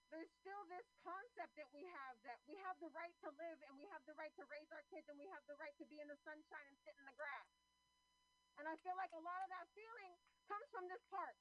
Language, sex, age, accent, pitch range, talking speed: English, female, 40-59, American, 300-380 Hz, 270 wpm